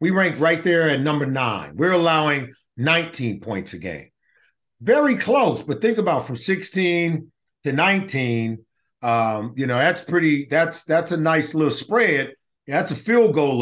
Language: English